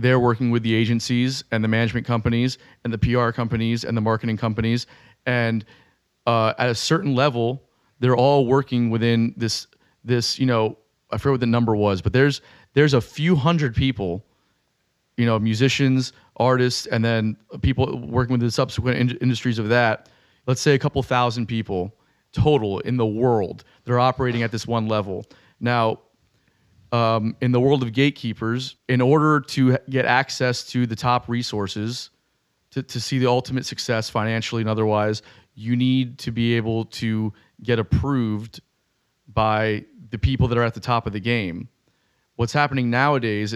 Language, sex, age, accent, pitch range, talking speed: English, male, 30-49, American, 110-125 Hz, 170 wpm